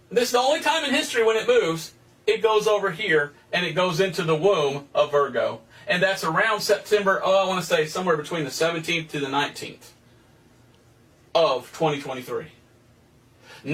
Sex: male